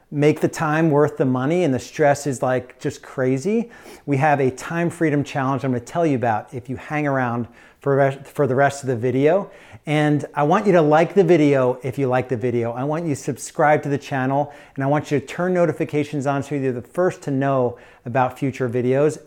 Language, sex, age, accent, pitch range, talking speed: English, male, 40-59, American, 125-155 Hz, 225 wpm